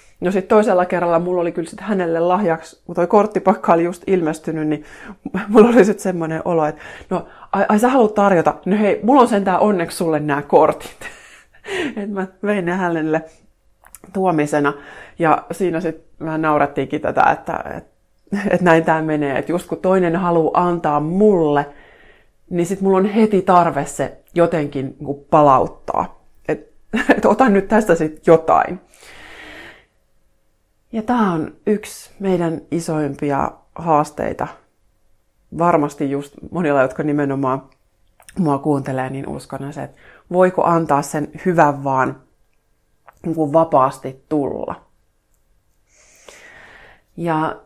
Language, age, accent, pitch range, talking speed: Finnish, 30-49, native, 150-190 Hz, 130 wpm